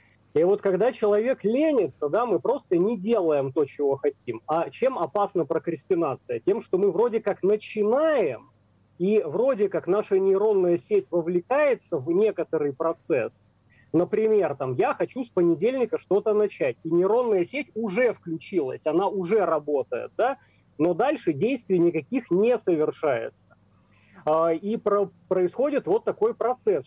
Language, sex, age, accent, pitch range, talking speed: Russian, male, 30-49, native, 170-270 Hz, 130 wpm